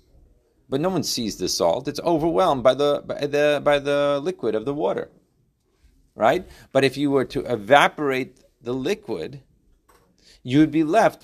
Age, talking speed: 40-59, 165 wpm